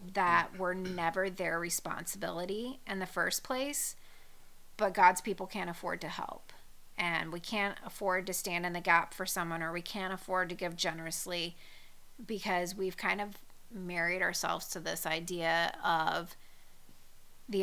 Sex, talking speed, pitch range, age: female, 155 wpm, 175-210 Hz, 30-49